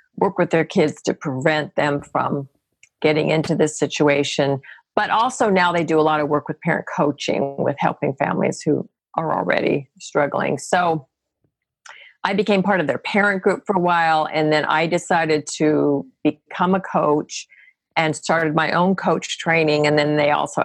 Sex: female